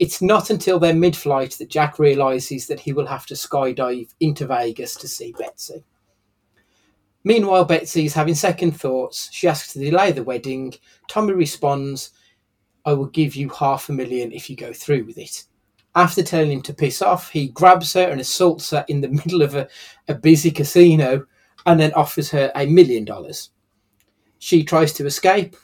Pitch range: 130-170 Hz